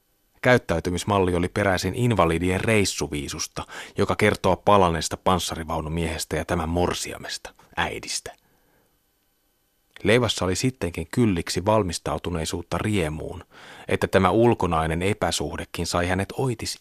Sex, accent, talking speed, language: male, native, 95 wpm, Finnish